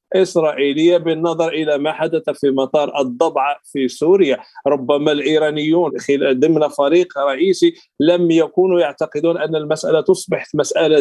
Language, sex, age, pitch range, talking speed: Arabic, male, 40-59, 150-195 Hz, 125 wpm